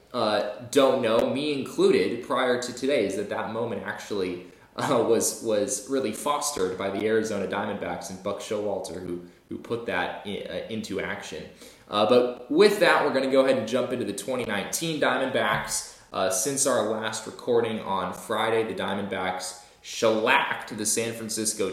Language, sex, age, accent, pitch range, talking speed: English, male, 20-39, American, 100-130 Hz, 170 wpm